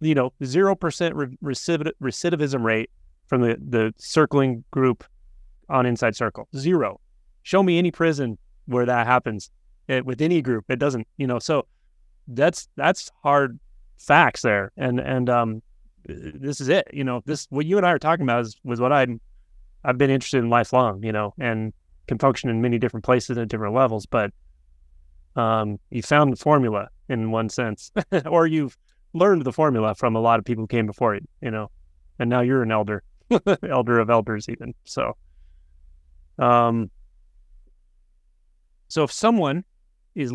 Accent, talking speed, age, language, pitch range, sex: American, 170 wpm, 30-49, English, 110-145 Hz, male